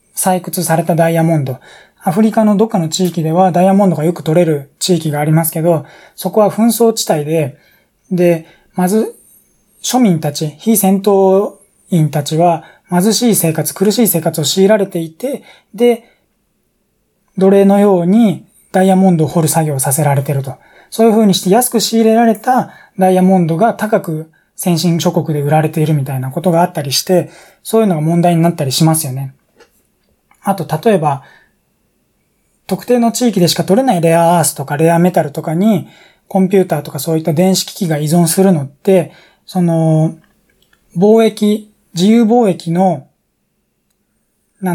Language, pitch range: Japanese, 160-200 Hz